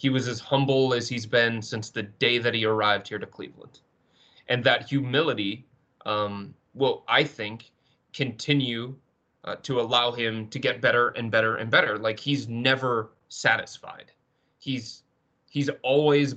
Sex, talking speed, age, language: male, 155 wpm, 30-49, English